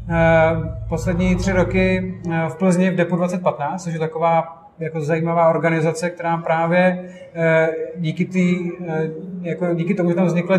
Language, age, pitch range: Czech, 30-49, 160-180 Hz